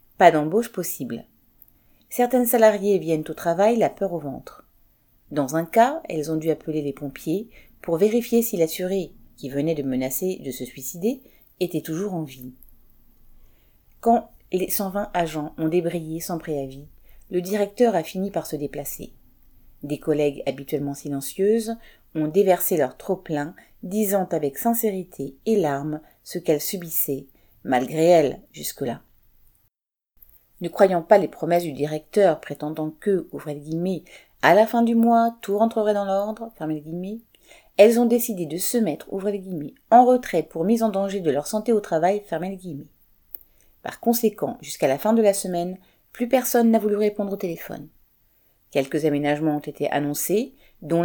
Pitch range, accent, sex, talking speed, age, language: 150-210 Hz, French, female, 160 wpm, 40-59, French